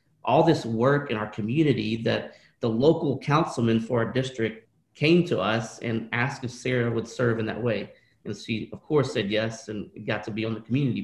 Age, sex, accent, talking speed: 40-59, male, American, 205 wpm